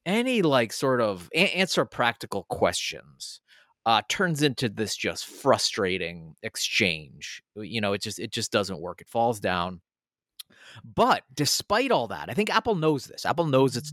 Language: English